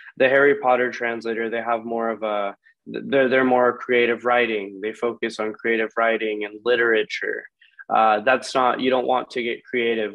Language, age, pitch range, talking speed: English, 20-39, 110-120 Hz, 160 wpm